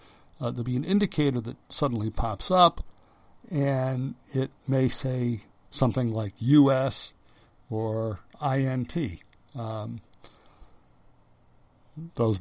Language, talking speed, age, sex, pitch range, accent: English, 95 wpm, 60-79, male, 115-145 Hz, American